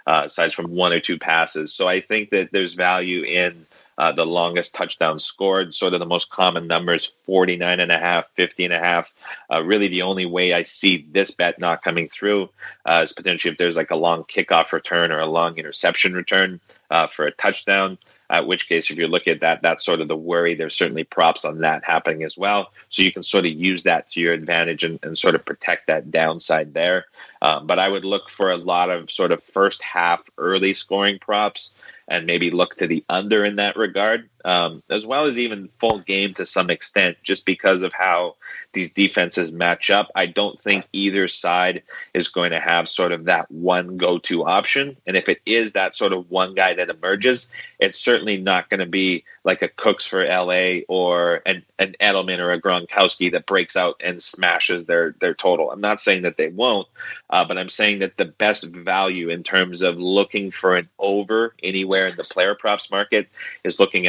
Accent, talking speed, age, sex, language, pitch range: American, 215 wpm, 30-49, male, English, 85-100 Hz